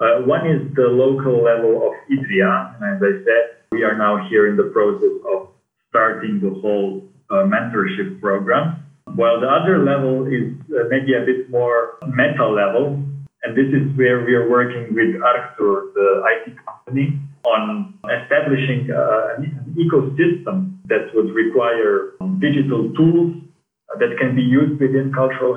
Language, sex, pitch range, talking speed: English, male, 120-190 Hz, 155 wpm